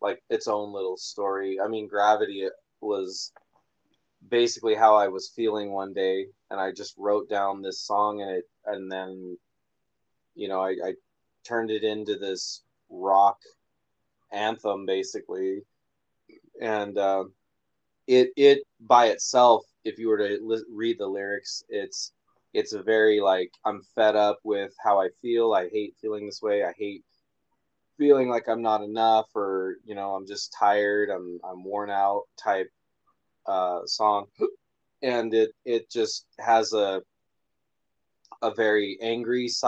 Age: 20-39